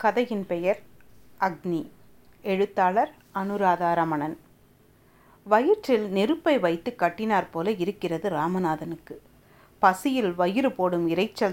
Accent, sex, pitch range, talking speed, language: native, female, 185-255 Hz, 85 wpm, Tamil